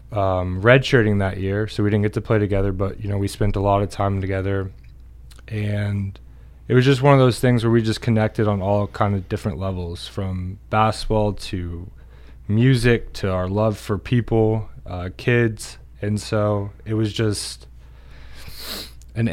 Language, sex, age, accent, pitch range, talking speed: English, male, 20-39, American, 95-110 Hz, 175 wpm